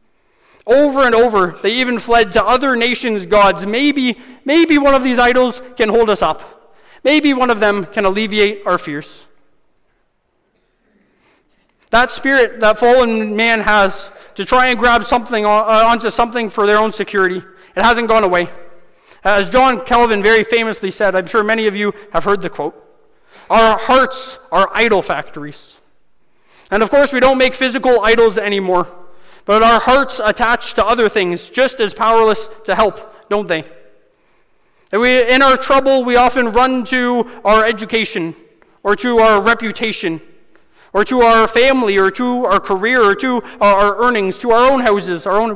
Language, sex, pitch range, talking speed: English, male, 200-245 Hz, 165 wpm